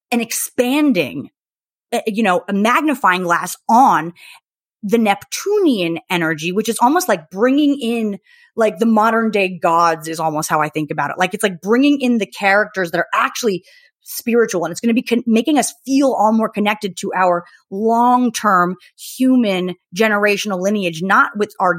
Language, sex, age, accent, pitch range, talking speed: English, female, 30-49, American, 185-245 Hz, 165 wpm